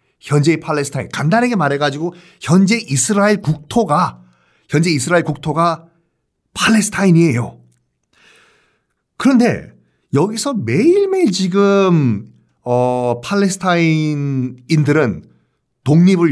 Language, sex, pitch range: Korean, male, 120-170 Hz